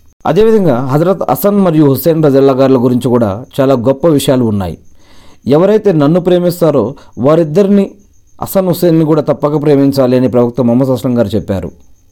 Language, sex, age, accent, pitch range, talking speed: Telugu, male, 40-59, native, 125-170 Hz, 130 wpm